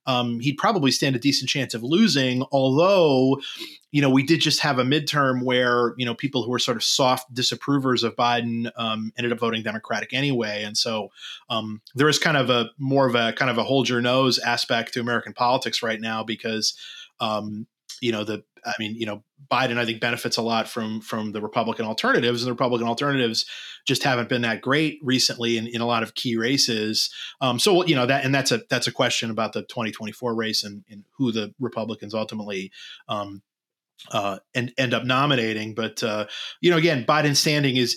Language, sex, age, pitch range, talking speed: English, male, 30-49, 115-140 Hz, 205 wpm